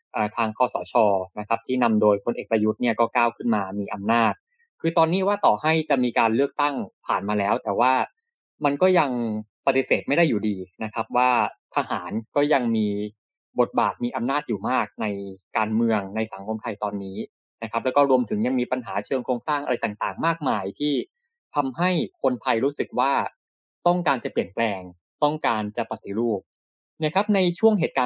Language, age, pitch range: Thai, 20-39, 110-155 Hz